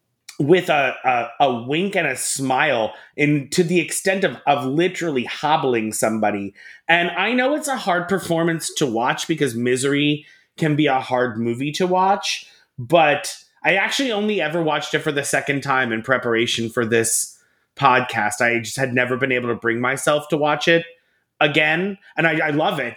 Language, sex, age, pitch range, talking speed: English, male, 30-49, 140-180 Hz, 175 wpm